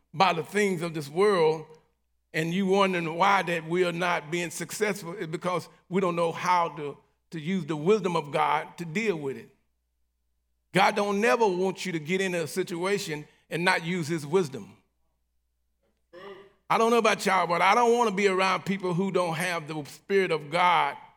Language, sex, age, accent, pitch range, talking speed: English, male, 40-59, American, 165-200 Hz, 195 wpm